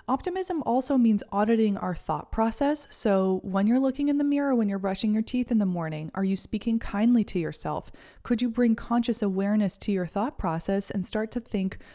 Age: 20-39